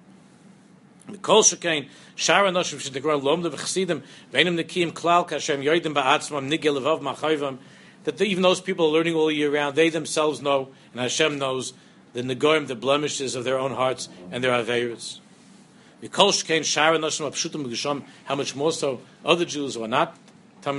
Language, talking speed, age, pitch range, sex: English, 100 wpm, 60-79, 145-185 Hz, male